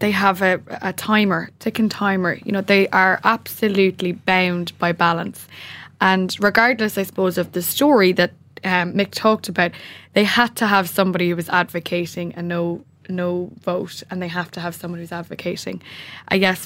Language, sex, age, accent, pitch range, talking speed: English, female, 10-29, Irish, 175-195 Hz, 175 wpm